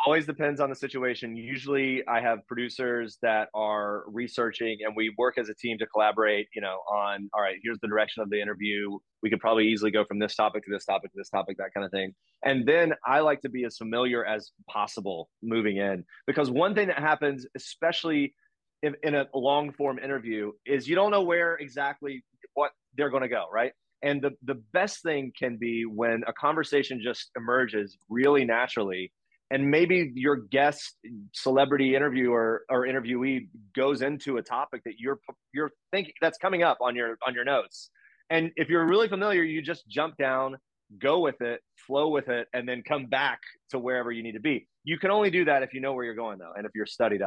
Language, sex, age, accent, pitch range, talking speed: English, male, 30-49, American, 110-145 Hz, 205 wpm